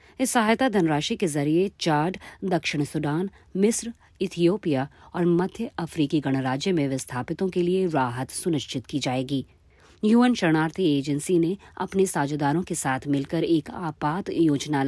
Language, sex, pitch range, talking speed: Hindi, female, 140-190 Hz, 135 wpm